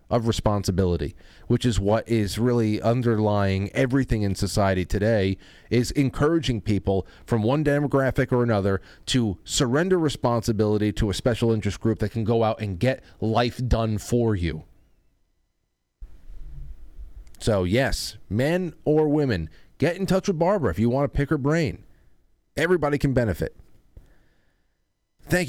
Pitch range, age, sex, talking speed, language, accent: 95-140 Hz, 30-49, male, 140 wpm, English, American